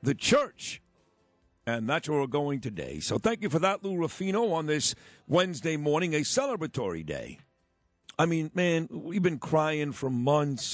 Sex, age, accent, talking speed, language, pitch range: male, 50-69, American, 170 wpm, English, 125-155 Hz